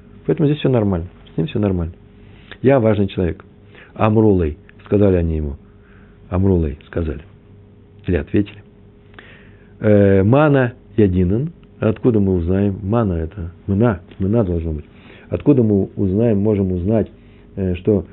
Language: Russian